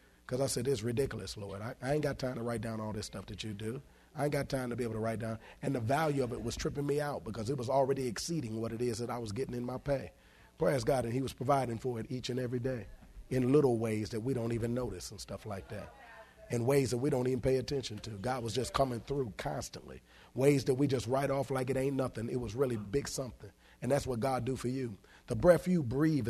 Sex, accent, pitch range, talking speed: male, American, 120-155 Hz, 270 wpm